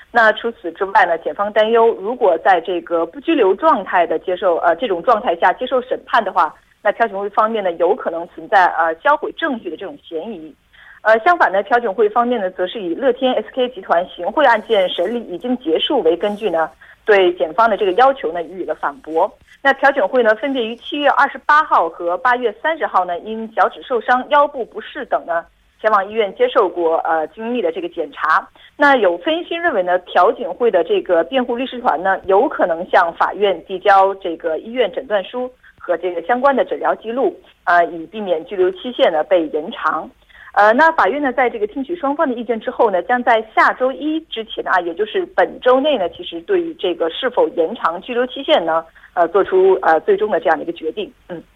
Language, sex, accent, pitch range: Korean, female, Chinese, 180-270 Hz